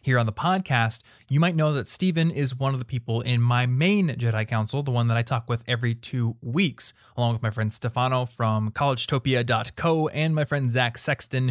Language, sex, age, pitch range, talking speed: English, male, 20-39, 115-145 Hz, 210 wpm